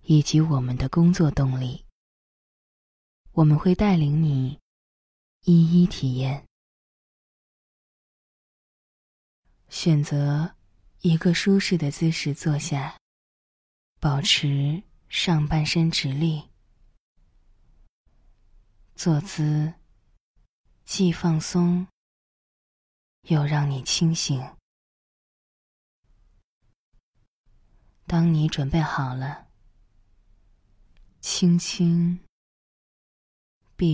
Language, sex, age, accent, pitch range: Chinese, female, 20-39, native, 125-170 Hz